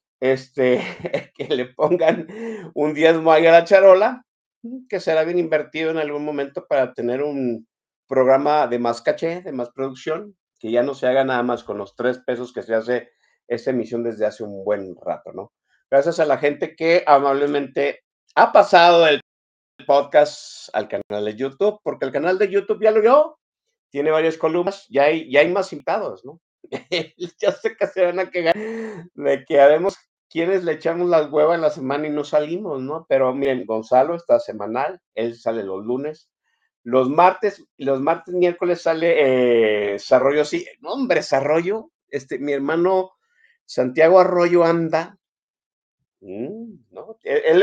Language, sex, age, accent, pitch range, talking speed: Spanish, male, 50-69, Mexican, 130-180 Hz, 165 wpm